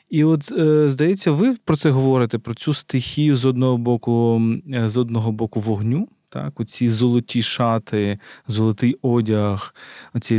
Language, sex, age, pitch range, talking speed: Ukrainian, male, 20-39, 110-140 Hz, 140 wpm